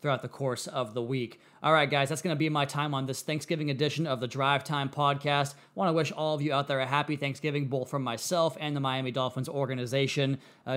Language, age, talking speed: English, 20-39, 250 wpm